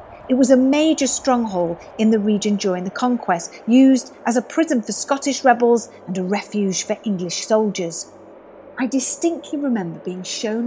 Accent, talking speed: British, 165 wpm